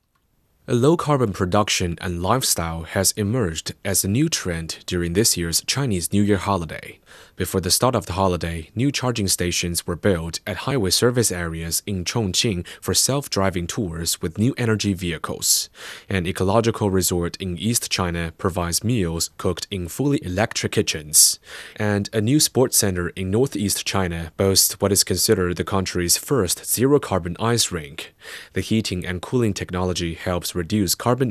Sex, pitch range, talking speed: male, 85-110 Hz, 160 wpm